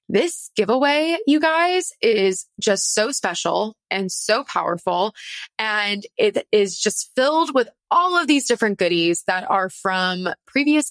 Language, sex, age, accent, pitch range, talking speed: English, female, 20-39, American, 190-265 Hz, 145 wpm